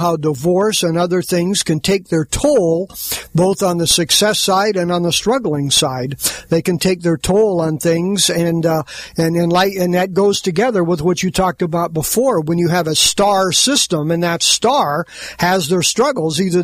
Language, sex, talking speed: English, male, 190 wpm